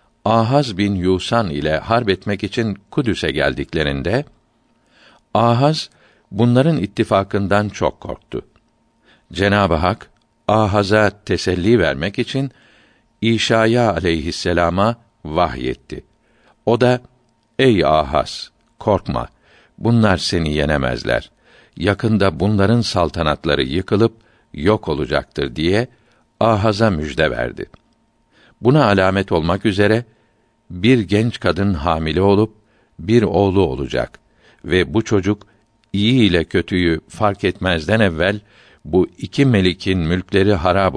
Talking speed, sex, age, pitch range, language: 100 wpm, male, 60-79, 90-115 Hz, Turkish